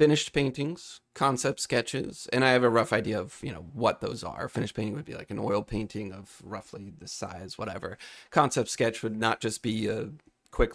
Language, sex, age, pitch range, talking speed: English, male, 30-49, 110-140 Hz, 205 wpm